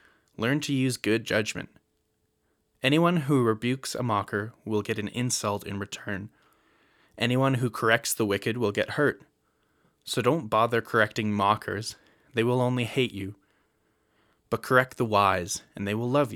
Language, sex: English, male